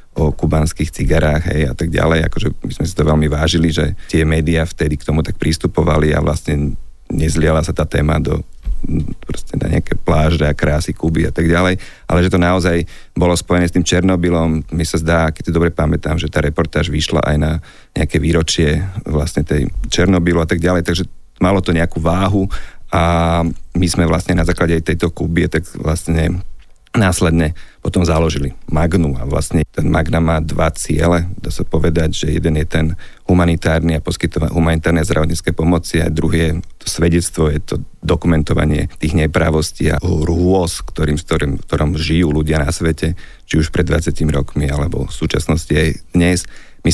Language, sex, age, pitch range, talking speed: Slovak, male, 40-59, 80-85 Hz, 175 wpm